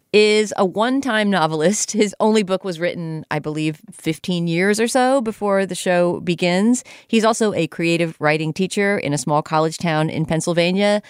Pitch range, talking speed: 155-195 Hz, 175 wpm